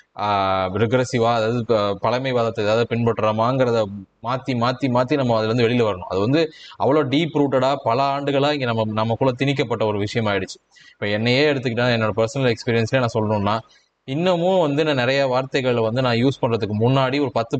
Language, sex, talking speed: Tamil, male, 155 wpm